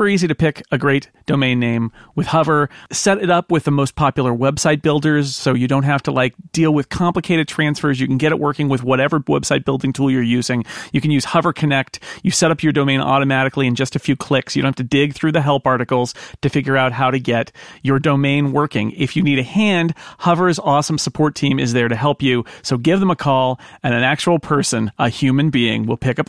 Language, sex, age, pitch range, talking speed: English, male, 40-59, 125-155 Hz, 235 wpm